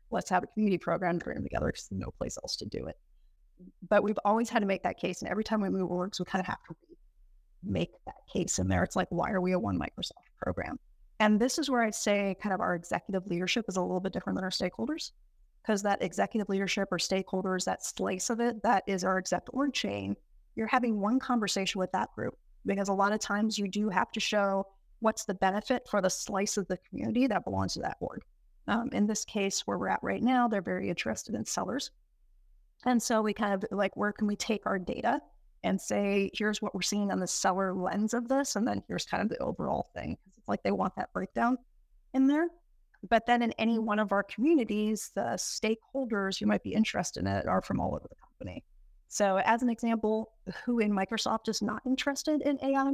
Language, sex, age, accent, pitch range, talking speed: English, female, 30-49, American, 190-240 Hz, 230 wpm